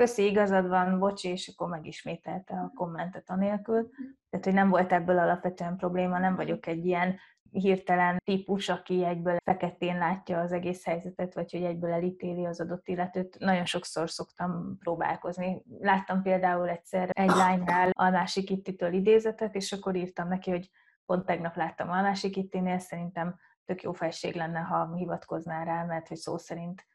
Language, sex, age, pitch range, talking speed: Hungarian, female, 20-39, 175-195 Hz, 160 wpm